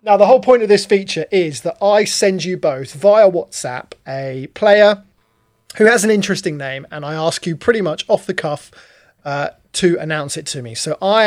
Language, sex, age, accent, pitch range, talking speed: English, male, 30-49, British, 150-195 Hz, 210 wpm